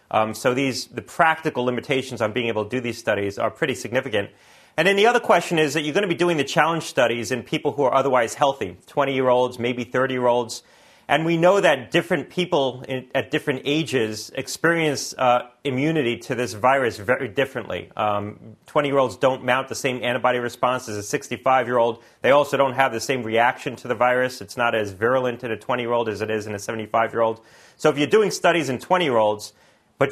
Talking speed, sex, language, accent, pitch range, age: 200 wpm, male, English, American, 115-145 Hz, 30-49